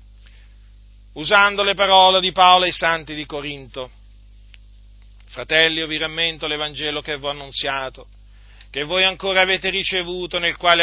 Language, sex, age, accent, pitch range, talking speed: Italian, male, 40-59, native, 150-225 Hz, 145 wpm